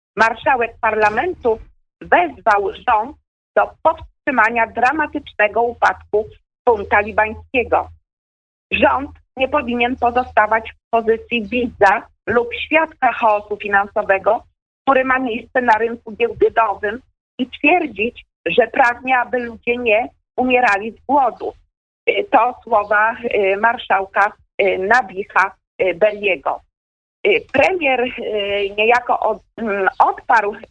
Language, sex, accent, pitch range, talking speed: Polish, female, native, 210-275 Hz, 90 wpm